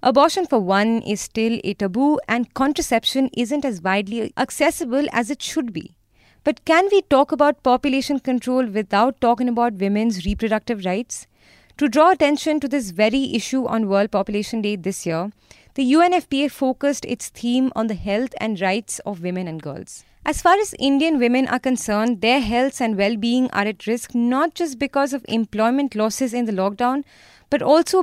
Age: 20-39